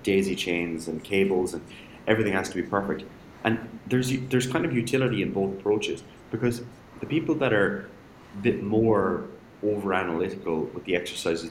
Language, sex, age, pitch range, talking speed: English, male, 30-49, 85-110 Hz, 160 wpm